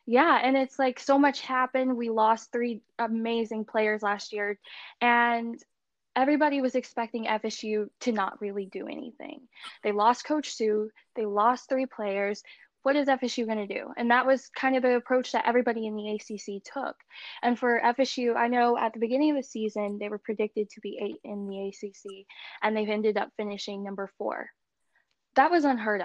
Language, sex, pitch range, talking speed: English, female, 210-260 Hz, 185 wpm